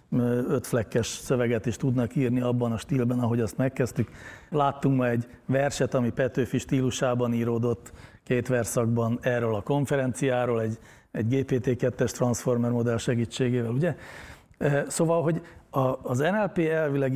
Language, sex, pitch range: Hungarian, male, 120-140 Hz